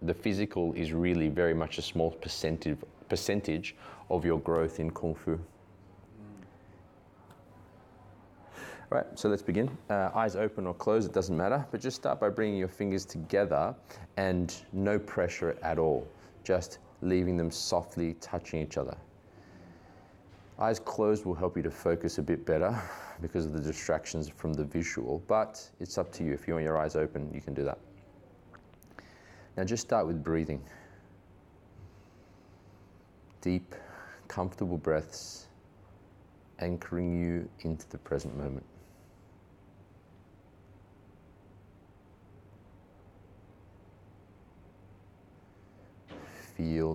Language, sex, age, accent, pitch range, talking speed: English, male, 20-39, Australian, 80-100 Hz, 120 wpm